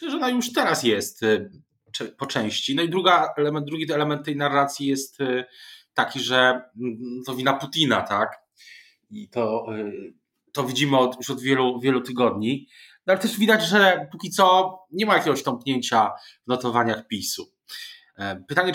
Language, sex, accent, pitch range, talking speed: Polish, male, native, 120-180 Hz, 150 wpm